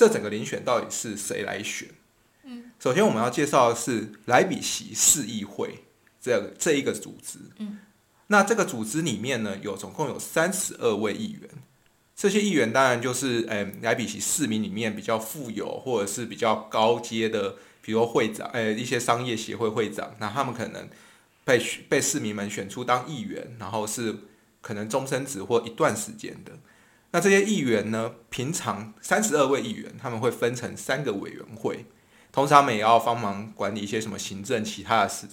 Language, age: Chinese, 20-39